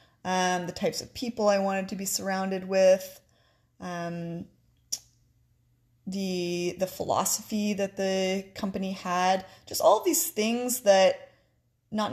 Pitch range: 175-210 Hz